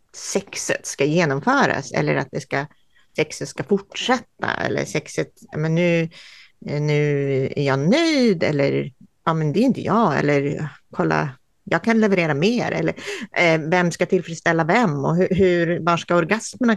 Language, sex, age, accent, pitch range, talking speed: Swedish, female, 40-59, native, 160-200 Hz, 155 wpm